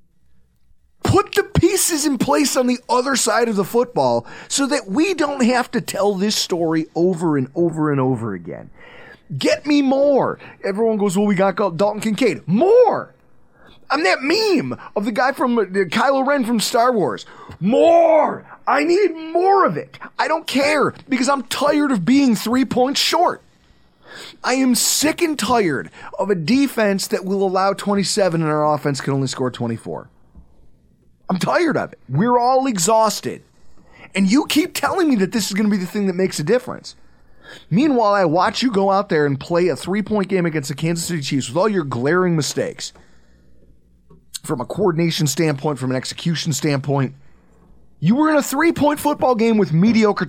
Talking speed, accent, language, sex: 180 wpm, American, English, male